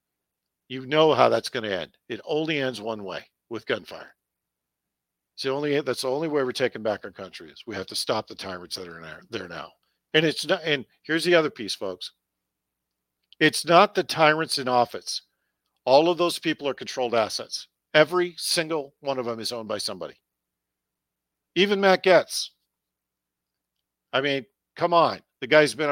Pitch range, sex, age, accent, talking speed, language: 105-160 Hz, male, 50-69, American, 185 wpm, English